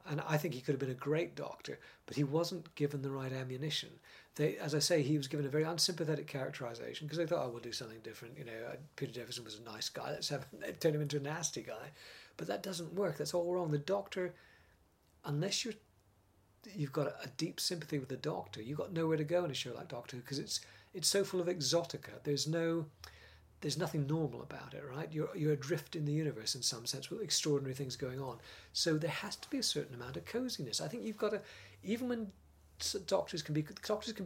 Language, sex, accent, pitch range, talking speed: English, male, British, 130-170 Hz, 235 wpm